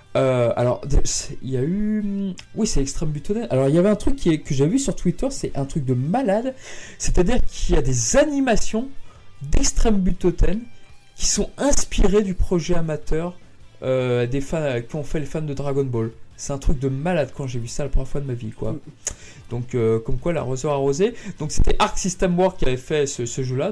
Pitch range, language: 130-185 Hz, French